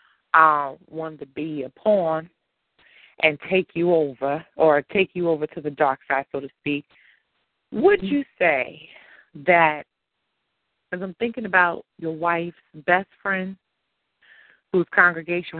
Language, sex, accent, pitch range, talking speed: English, female, American, 155-185 Hz, 135 wpm